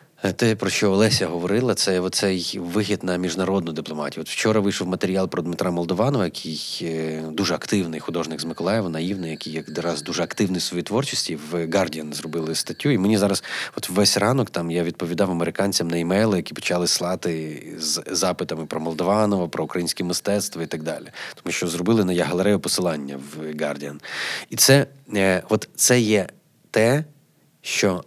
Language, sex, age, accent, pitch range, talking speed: Ukrainian, male, 30-49, native, 85-100 Hz, 165 wpm